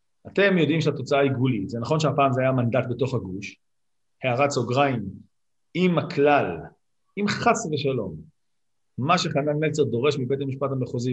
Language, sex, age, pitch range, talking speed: Hebrew, male, 50-69, 125-150 Hz, 145 wpm